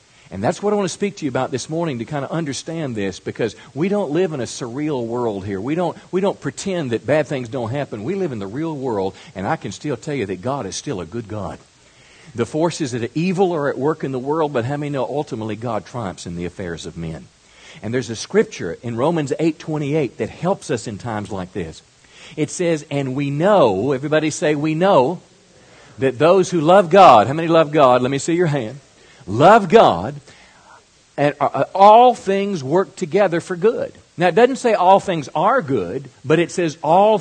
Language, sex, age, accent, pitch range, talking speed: English, male, 50-69, American, 120-180 Hz, 220 wpm